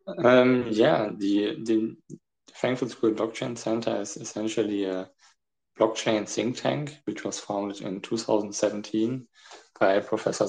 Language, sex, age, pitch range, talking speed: English, male, 20-39, 105-120 Hz, 120 wpm